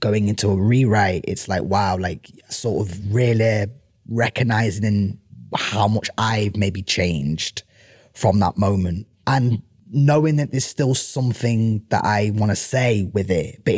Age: 20-39